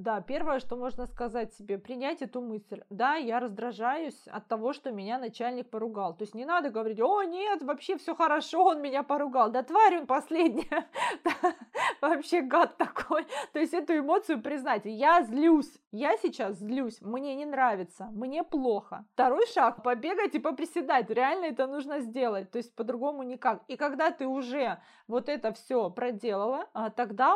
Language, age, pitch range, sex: Russian, 20-39, 230-310 Hz, female